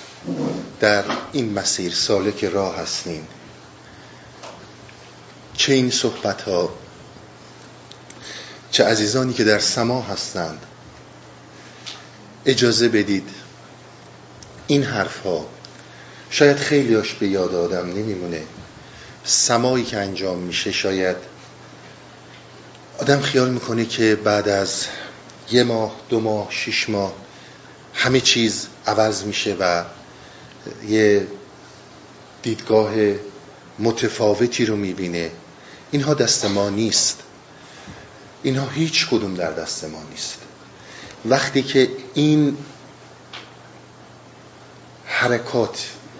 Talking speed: 90 wpm